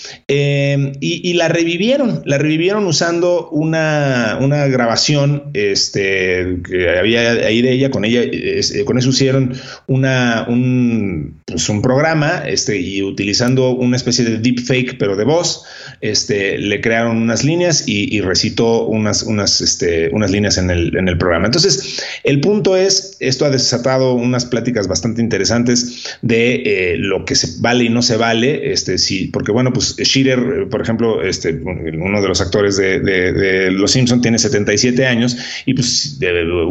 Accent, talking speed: Mexican, 165 wpm